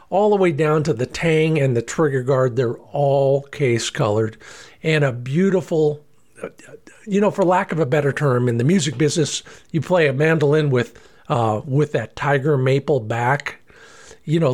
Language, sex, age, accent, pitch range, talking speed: English, male, 50-69, American, 135-170 Hz, 180 wpm